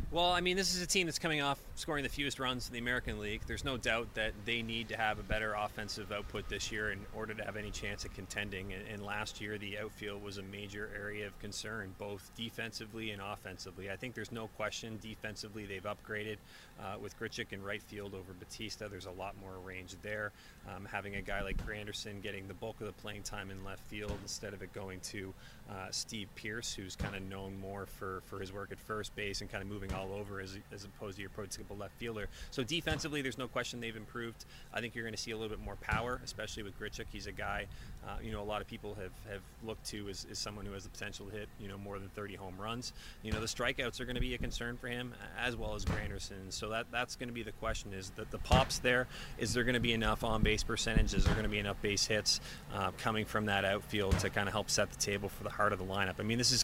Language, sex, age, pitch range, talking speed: English, male, 30-49, 100-115 Hz, 260 wpm